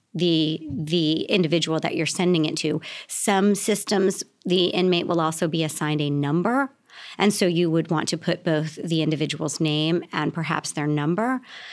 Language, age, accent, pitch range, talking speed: English, 40-59, American, 160-195 Hz, 170 wpm